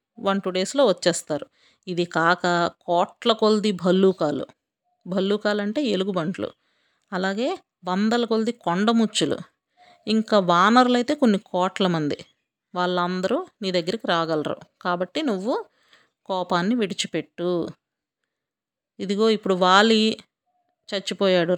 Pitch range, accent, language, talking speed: 185-230 Hz, native, Telugu, 95 wpm